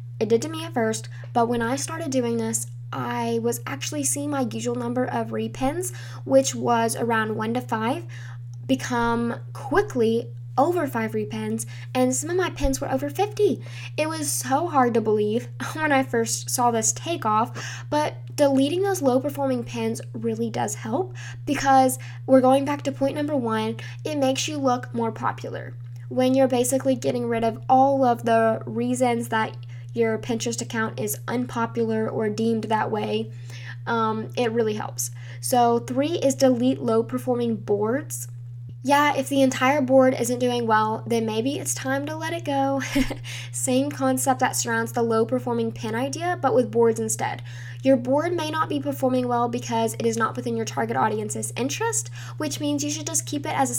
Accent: American